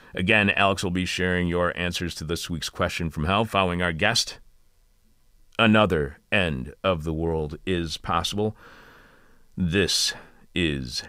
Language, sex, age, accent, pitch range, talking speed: English, male, 40-59, American, 80-105 Hz, 135 wpm